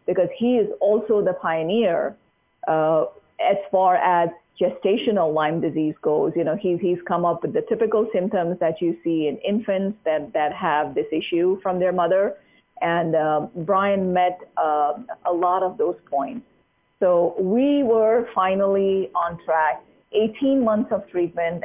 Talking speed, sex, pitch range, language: 160 wpm, female, 175-225 Hz, English